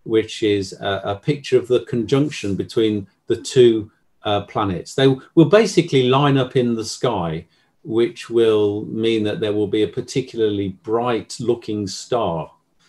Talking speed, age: 150 wpm, 40-59